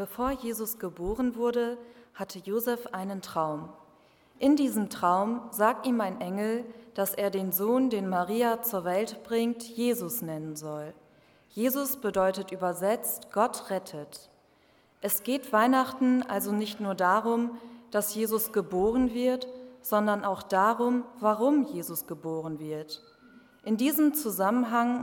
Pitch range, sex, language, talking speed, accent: 195-245 Hz, female, German, 125 wpm, German